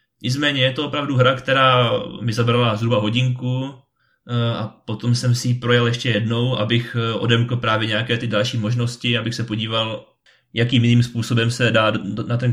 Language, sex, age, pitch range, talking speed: Czech, male, 20-39, 115-130 Hz, 165 wpm